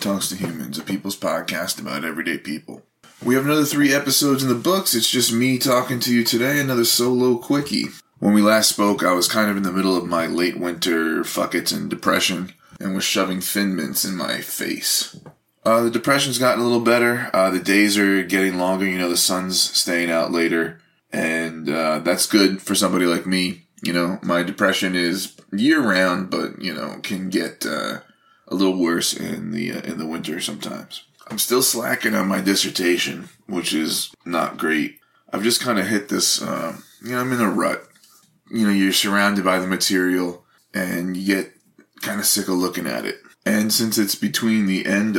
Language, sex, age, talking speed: English, male, 20-39, 200 wpm